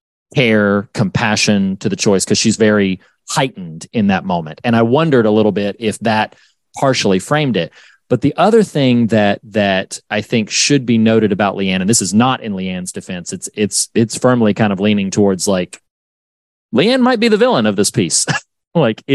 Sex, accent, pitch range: male, American, 100-130 Hz